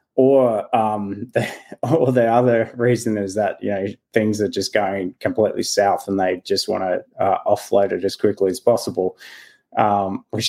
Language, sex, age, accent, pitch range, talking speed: English, male, 20-39, Australian, 100-125 Hz, 175 wpm